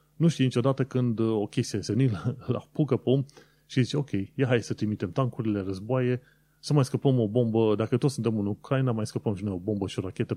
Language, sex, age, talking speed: Romanian, male, 30-49, 220 wpm